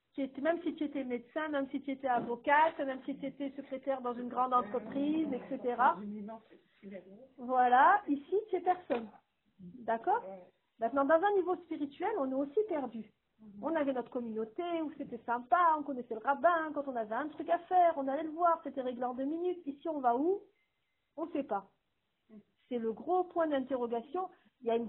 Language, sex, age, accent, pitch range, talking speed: French, female, 40-59, French, 265-365 Hz, 190 wpm